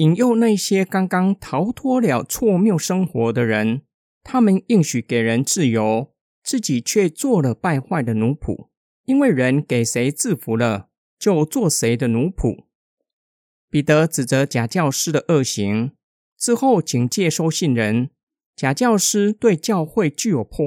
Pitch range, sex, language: 125-200 Hz, male, Chinese